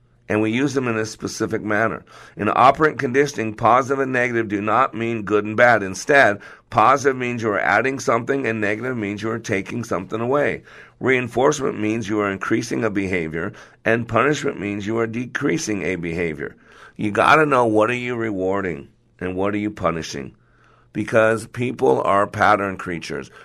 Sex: male